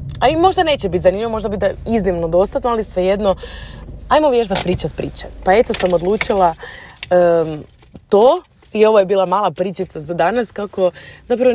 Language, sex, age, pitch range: Croatian, female, 20-39, 165-195 Hz